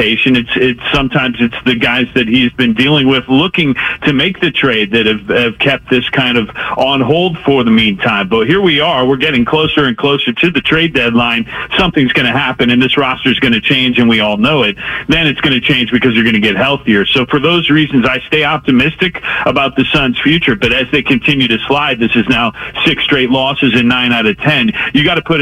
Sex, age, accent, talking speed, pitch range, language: male, 40-59, American, 235 wpm, 125-150 Hz, English